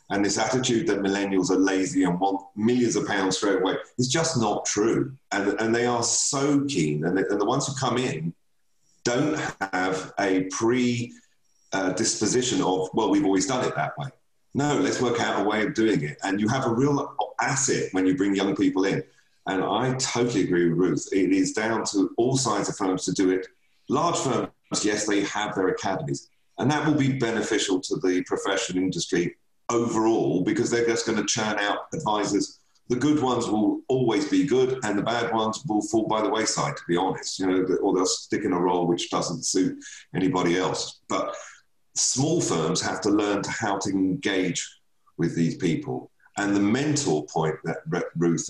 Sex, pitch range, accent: male, 95-130 Hz, British